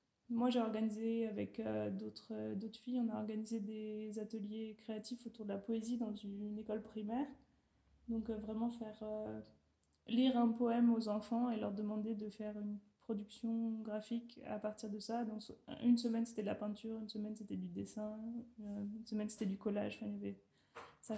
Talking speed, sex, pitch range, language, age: 185 wpm, female, 210-230 Hz, German, 20-39